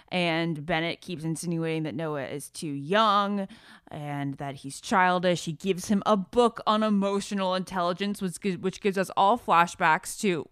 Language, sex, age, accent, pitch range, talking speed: English, female, 20-39, American, 160-195 Hz, 155 wpm